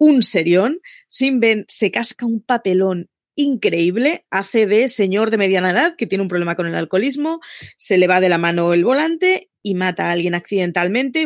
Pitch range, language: 180-245 Hz, Spanish